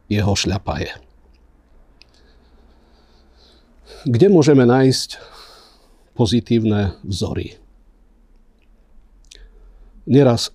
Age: 50-69